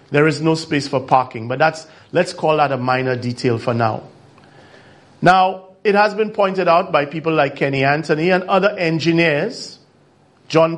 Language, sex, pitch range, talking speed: English, male, 135-175 Hz, 175 wpm